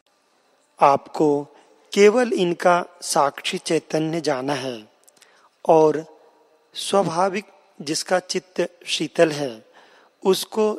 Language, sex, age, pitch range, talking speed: Hindi, male, 40-59, 150-185 Hz, 80 wpm